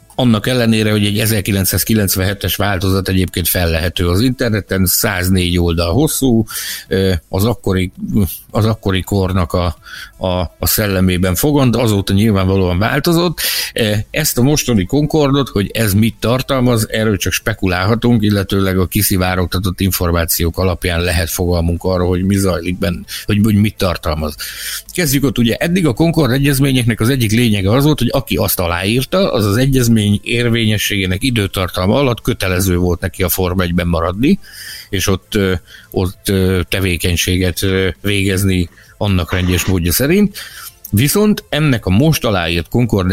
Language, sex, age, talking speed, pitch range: Hungarian, male, 60-79, 135 wpm, 90-120 Hz